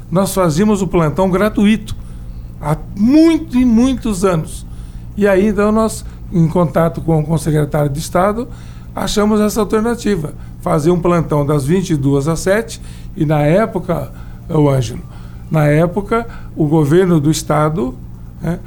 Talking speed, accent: 130 wpm, Brazilian